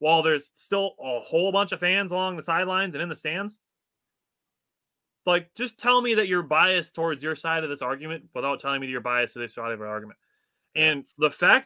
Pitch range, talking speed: 155-235 Hz, 220 wpm